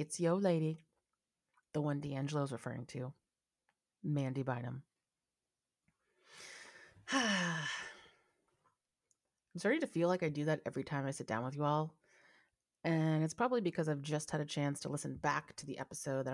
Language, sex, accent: English, female, American